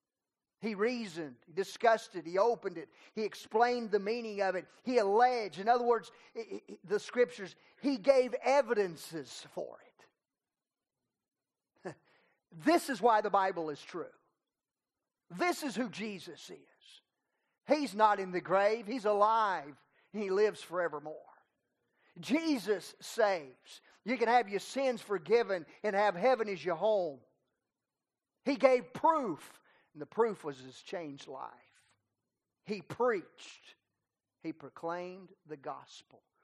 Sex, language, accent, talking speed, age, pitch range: male, English, American, 125 wpm, 40-59, 160-235 Hz